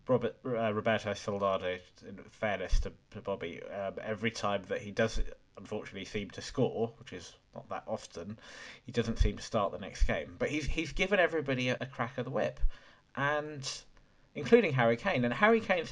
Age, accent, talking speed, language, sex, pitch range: 20-39, British, 190 wpm, English, male, 105-135 Hz